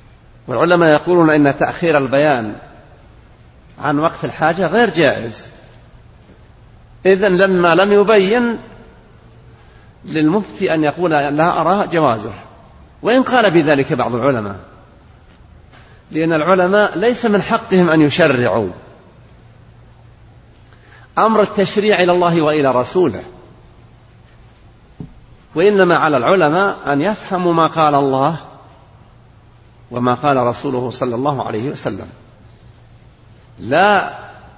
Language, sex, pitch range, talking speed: Arabic, male, 120-175 Hz, 95 wpm